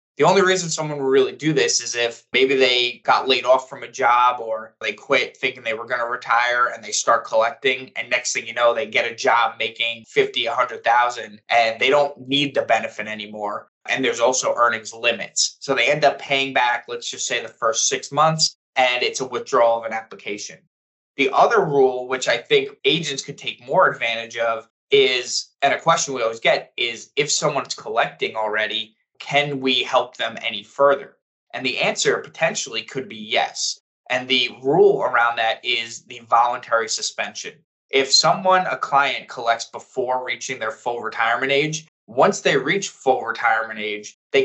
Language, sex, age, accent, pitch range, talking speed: English, male, 20-39, American, 115-145 Hz, 190 wpm